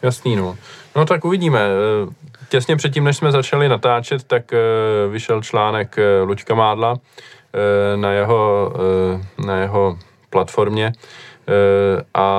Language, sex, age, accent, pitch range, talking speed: Czech, male, 20-39, native, 100-110 Hz, 105 wpm